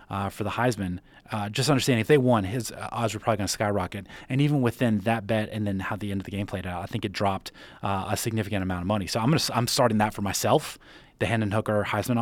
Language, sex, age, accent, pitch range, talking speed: English, male, 20-39, American, 105-125 Hz, 275 wpm